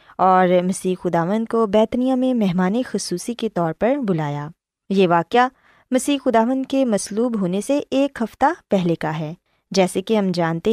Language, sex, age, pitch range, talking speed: Urdu, female, 20-39, 185-260 Hz, 155 wpm